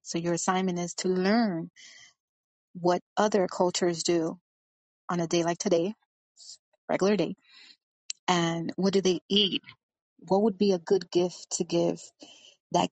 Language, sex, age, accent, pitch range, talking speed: English, female, 30-49, American, 170-205 Hz, 145 wpm